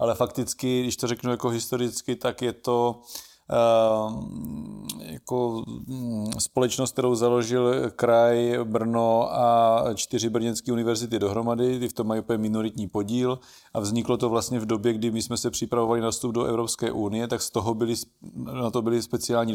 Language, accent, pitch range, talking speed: Czech, native, 110-120 Hz, 165 wpm